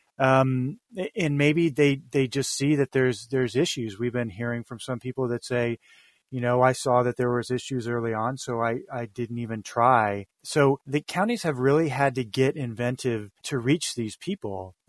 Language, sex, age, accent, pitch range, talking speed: English, male, 30-49, American, 115-140 Hz, 195 wpm